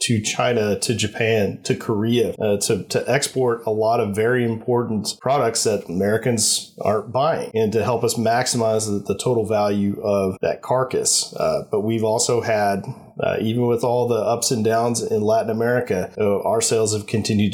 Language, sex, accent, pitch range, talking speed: English, male, American, 110-130 Hz, 185 wpm